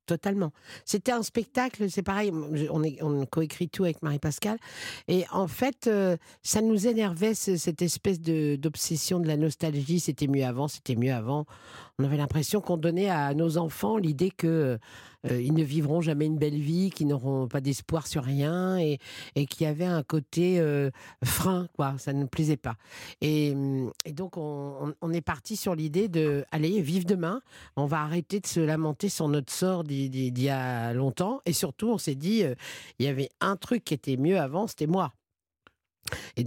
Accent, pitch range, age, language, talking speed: French, 145-190 Hz, 50-69, French, 185 wpm